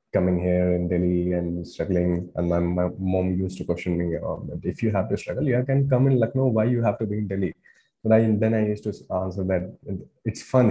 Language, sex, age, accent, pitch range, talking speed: English, male, 20-39, Indian, 100-135 Hz, 230 wpm